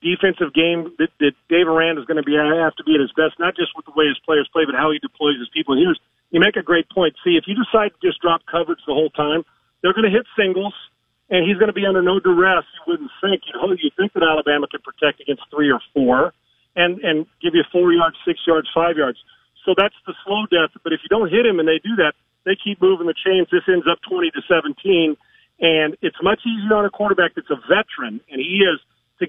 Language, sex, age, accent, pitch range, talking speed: English, male, 40-59, American, 165-210 Hz, 260 wpm